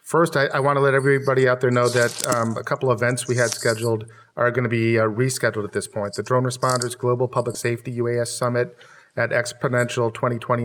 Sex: male